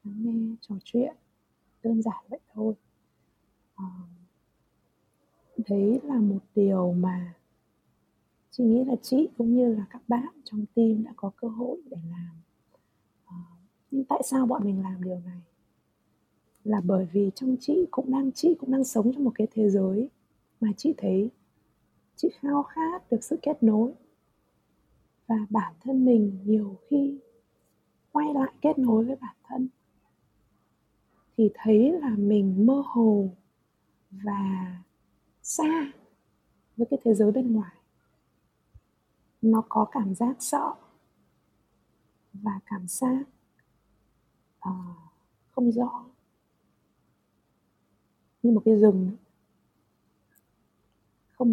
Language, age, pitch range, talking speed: Vietnamese, 20-39, 195-255 Hz, 120 wpm